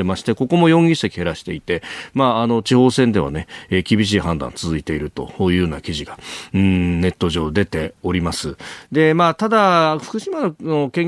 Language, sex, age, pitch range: Japanese, male, 40-59, 95-145 Hz